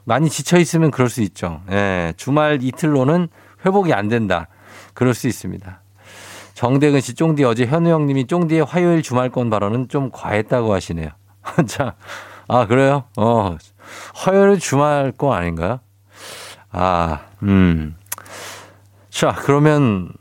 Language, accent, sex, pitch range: Korean, native, male, 100-145 Hz